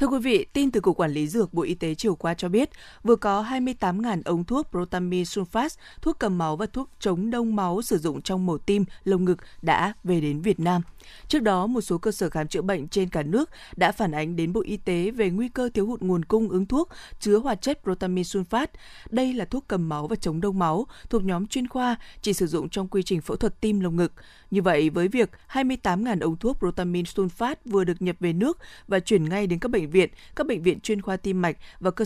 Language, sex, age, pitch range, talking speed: Vietnamese, female, 20-39, 175-225 Hz, 245 wpm